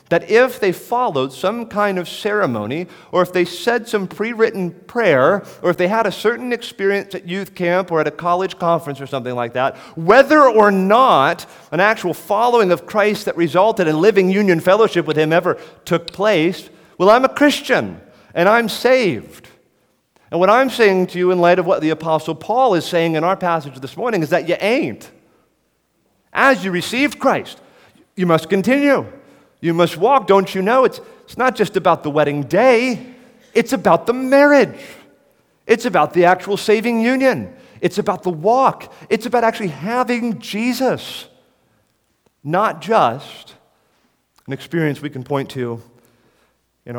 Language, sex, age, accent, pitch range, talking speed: English, male, 40-59, American, 145-220 Hz, 170 wpm